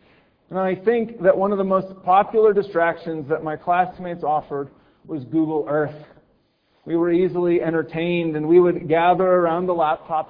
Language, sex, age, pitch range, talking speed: English, male, 40-59, 160-195 Hz, 165 wpm